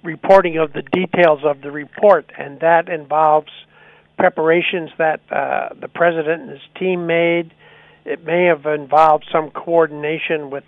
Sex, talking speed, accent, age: male, 145 wpm, American, 60-79